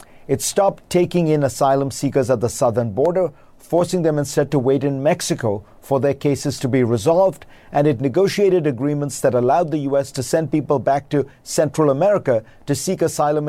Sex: male